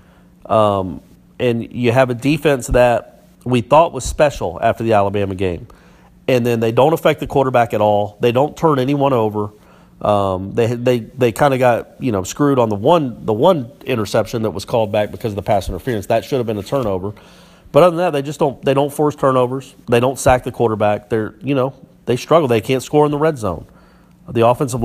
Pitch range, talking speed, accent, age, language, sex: 110-140 Hz, 220 wpm, American, 40-59, English, male